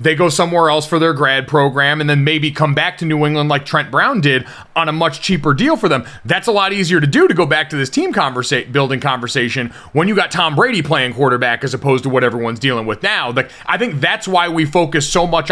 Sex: male